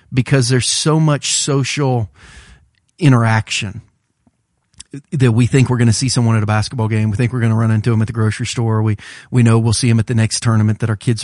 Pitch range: 110-130 Hz